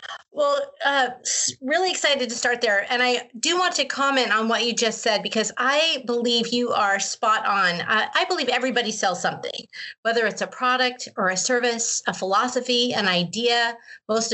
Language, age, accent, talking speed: English, 30-49, American, 180 wpm